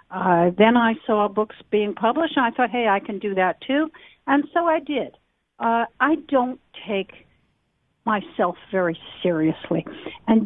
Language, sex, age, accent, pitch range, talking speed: English, female, 60-79, American, 180-235 Hz, 160 wpm